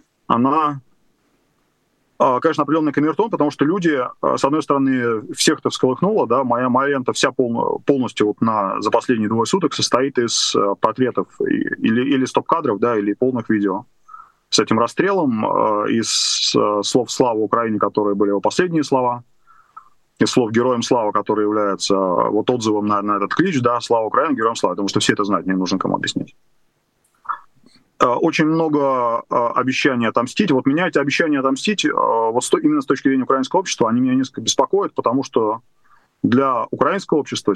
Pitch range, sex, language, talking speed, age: 115-160 Hz, male, Russian, 160 wpm, 20-39